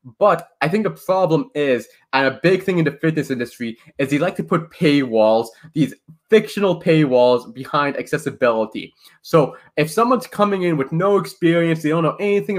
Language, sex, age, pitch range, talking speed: English, male, 20-39, 135-200 Hz, 175 wpm